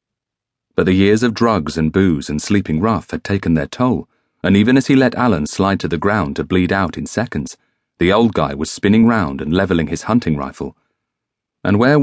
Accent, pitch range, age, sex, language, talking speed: British, 80-110 Hz, 40-59, male, English, 210 wpm